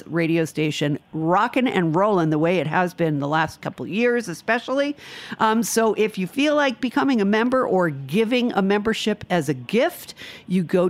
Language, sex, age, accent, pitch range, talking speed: English, female, 50-69, American, 165-210 Hz, 180 wpm